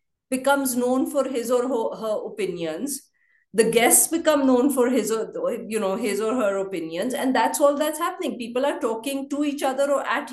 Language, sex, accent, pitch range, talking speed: English, female, Indian, 215-285 Hz, 190 wpm